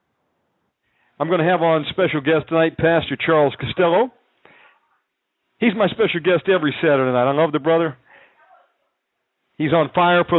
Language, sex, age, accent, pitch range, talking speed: English, male, 50-69, American, 145-175 Hz, 150 wpm